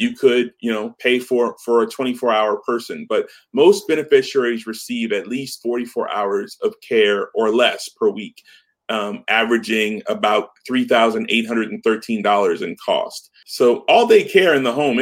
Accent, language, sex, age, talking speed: American, English, male, 30-49, 150 wpm